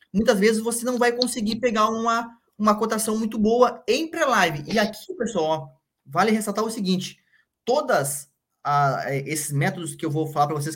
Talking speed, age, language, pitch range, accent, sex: 175 wpm, 20-39, Portuguese, 155-210 Hz, Brazilian, male